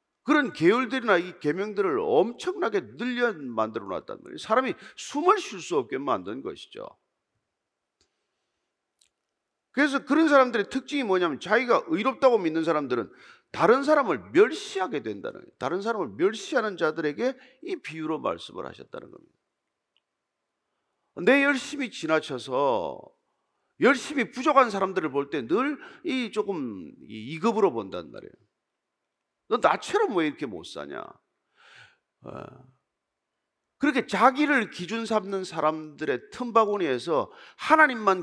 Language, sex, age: Korean, male, 40-59